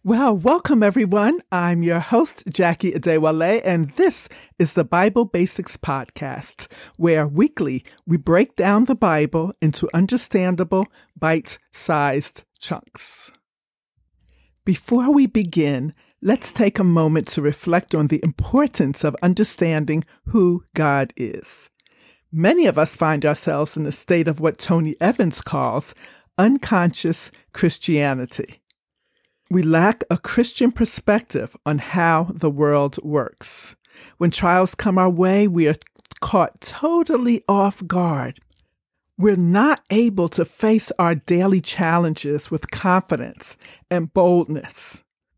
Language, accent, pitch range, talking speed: English, American, 160-215 Hz, 120 wpm